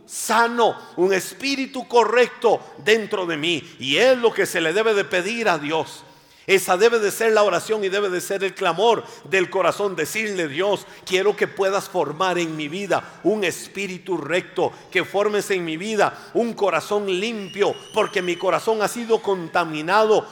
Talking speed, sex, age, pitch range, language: 170 wpm, male, 50-69, 185-240 Hz, Spanish